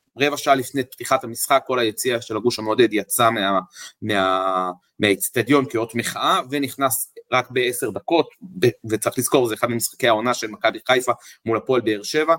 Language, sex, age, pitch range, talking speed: English, male, 30-49, 115-145 Hz, 150 wpm